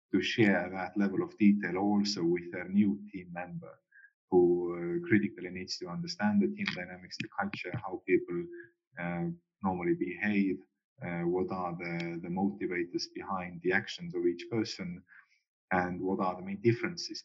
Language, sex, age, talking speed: English, male, 30-49, 160 wpm